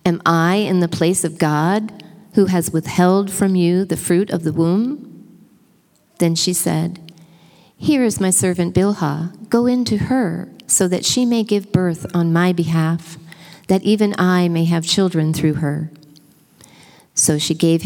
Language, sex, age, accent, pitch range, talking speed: English, female, 40-59, American, 155-185 Hz, 165 wpm